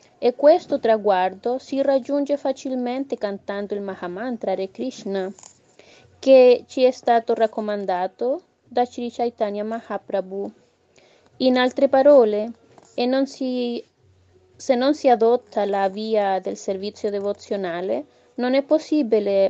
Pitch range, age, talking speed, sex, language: 200-250 Hz, 30-49, 115 wpm, female, Italian